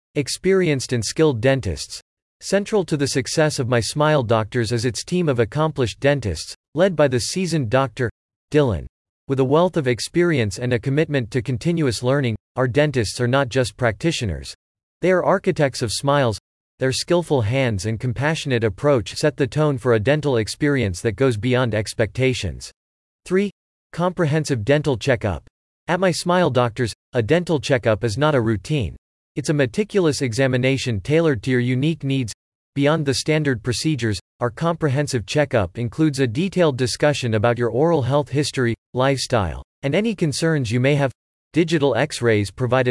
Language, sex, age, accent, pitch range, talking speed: English, male, 40-59, American, 120-155 Hz, 160 wpm